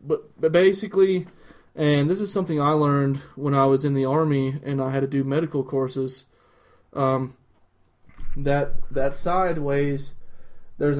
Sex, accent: male, American